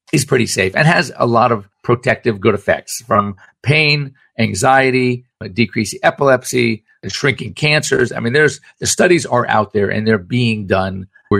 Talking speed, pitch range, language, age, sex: 165 wpm, 105-135 Hz, English, 50-69, male